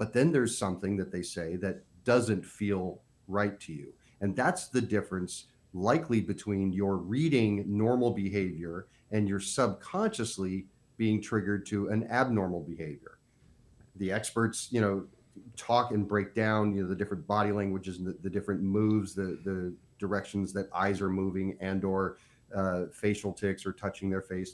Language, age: English, 40-59